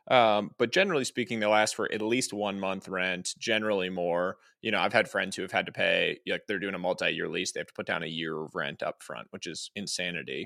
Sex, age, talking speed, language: male, 20-39, 260 wpm, English